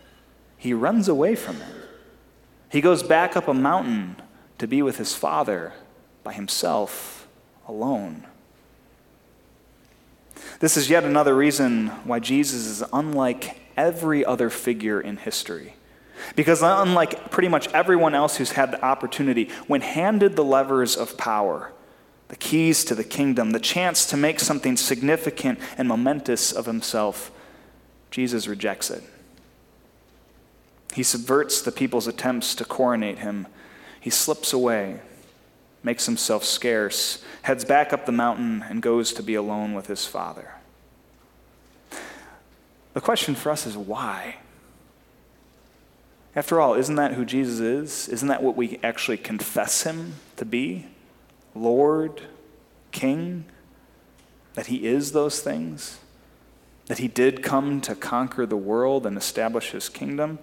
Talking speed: 135 wpm